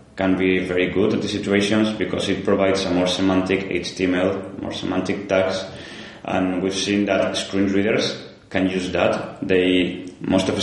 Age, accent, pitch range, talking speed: 20-39, Spanish, 90-95 Hz, 170 wpm